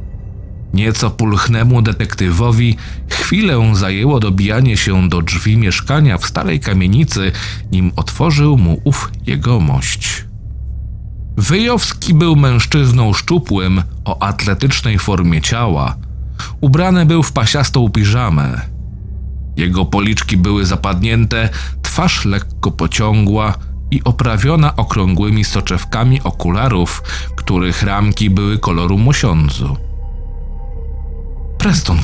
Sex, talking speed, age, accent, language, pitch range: male, 95 wpm, 40-59, native, Polish, 85-120 Hz